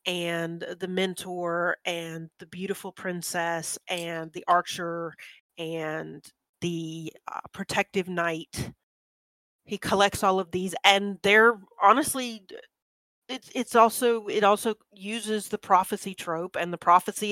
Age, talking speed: 40-59, 120 wpm